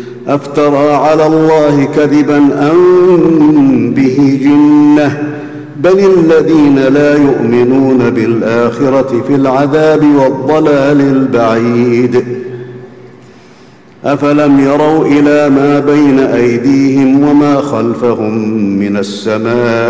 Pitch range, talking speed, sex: 125-150 Hz, 80 wpm, male